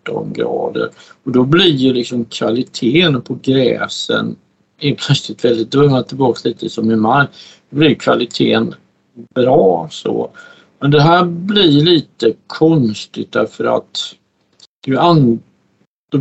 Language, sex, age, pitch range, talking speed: Swedish, male, 60-79, 115-155 Hz, 130 wpm